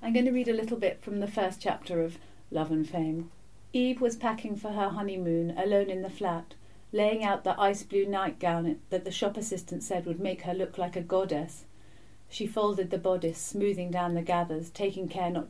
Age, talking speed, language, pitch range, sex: 40-59, 205 wpm, English, 175-205 Hz, female